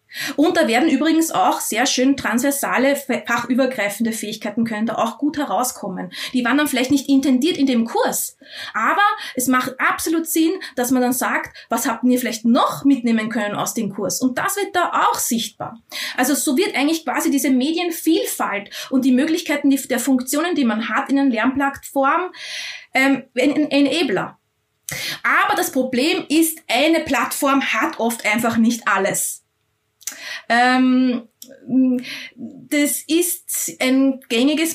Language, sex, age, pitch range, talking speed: German, female, 20-39, 225-275 Hz, 150 wpm